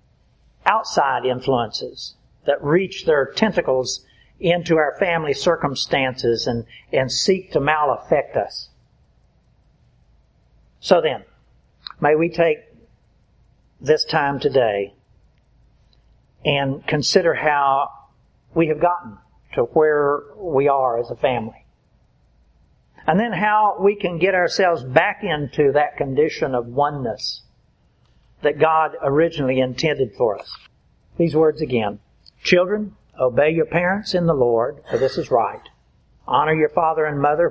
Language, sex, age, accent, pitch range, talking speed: English, male, 60-79, American, 130-165 Hz, 120 wpm